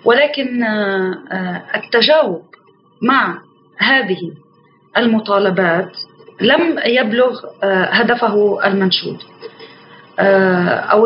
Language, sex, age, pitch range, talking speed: Arabic, female, 30-49, 190-235 Hz, 55 wpm